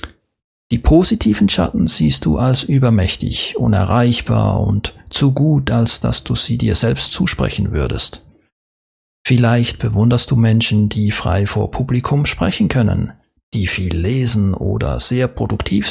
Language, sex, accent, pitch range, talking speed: German, male, German, 100-125 Hz, 130 wpm